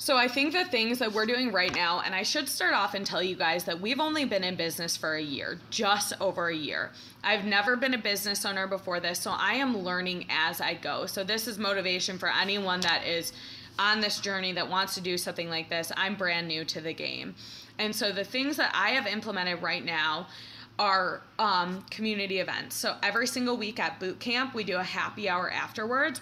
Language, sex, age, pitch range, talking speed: English, female, 20-39, 180-220 Hz, 225 wpm